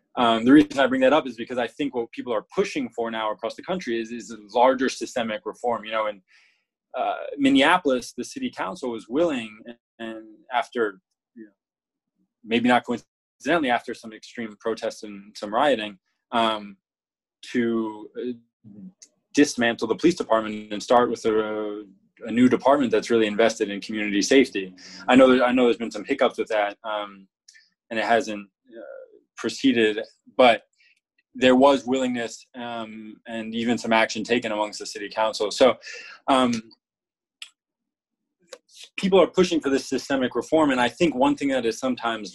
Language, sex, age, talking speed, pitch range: English, male, 20-39, 165 wpm, 110-135 Hz